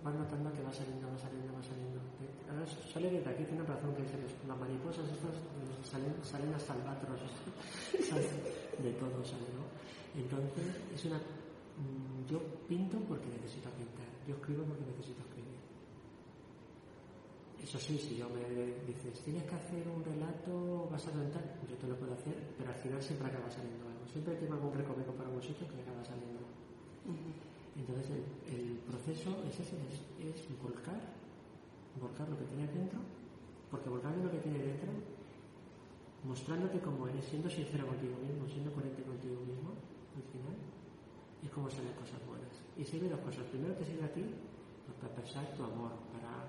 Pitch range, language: 125-155 Hz, Spanish